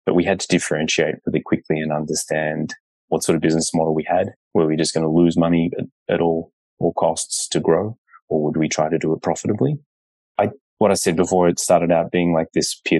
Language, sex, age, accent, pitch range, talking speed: English, male, 20-39, Australian, 80-85 Hz, 220 wpm